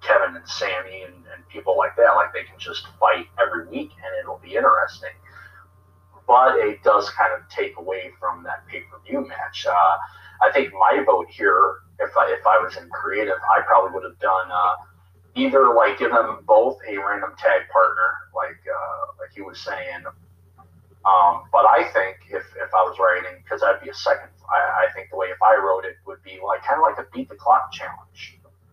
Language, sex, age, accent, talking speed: English, male, 30-49, American, 205 wpm